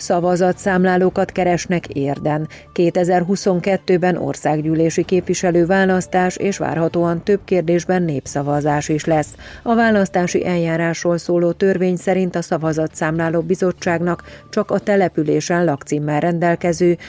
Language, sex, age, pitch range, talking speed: Hungarian, female, 40-59, 155-185 Hz, 100 wpm